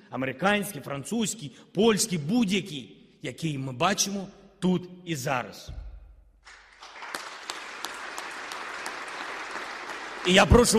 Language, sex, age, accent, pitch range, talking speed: Ukrainian, male, 40-59, native, 155-185 Hz, 70 wpm